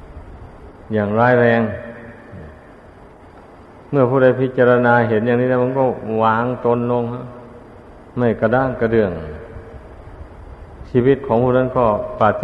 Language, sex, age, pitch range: Thai, male, 60-79, 105-120 Hz